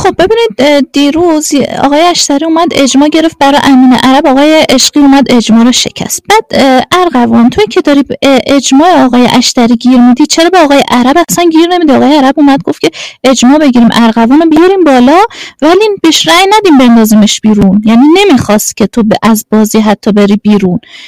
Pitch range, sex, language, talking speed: 240-320 Hz, female, Persian, 170 wpm